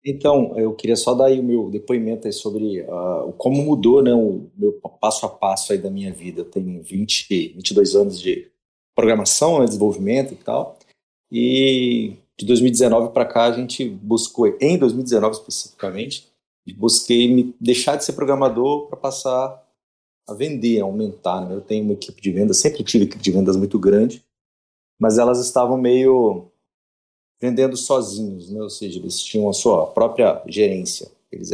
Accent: Brazilian